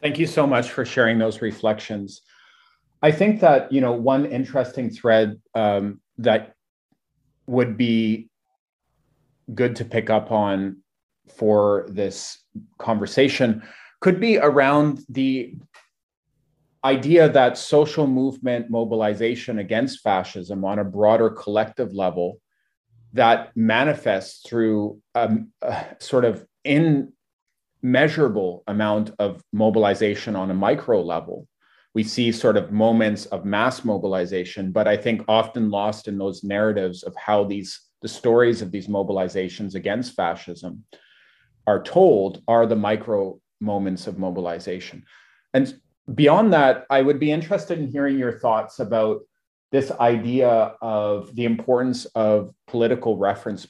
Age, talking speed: 30-49, 125 wpm